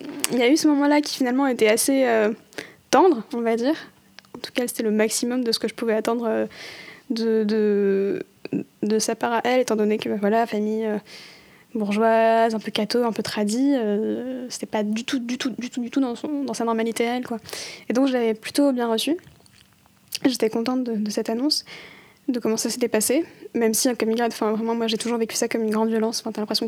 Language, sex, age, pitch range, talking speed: French, female, 10-29, 215-245 Hz, 230 wpm